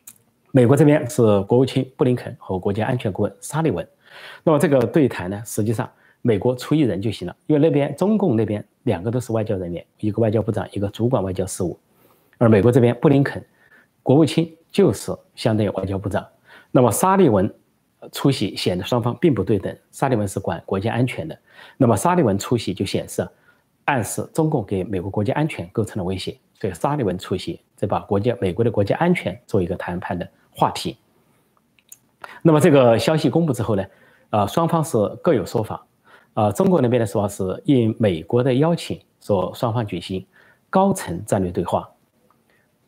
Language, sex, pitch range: Chinese, male, 100-130 Hz